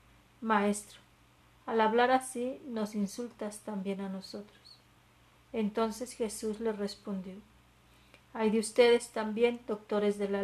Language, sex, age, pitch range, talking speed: Spanish, female, 40-59, 195-225 Hz, 115 wpm